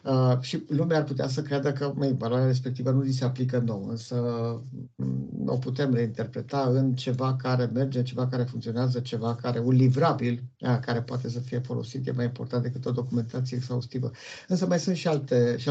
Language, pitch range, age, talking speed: Romanian, 120-150 Hz, 50-69, 190 wpm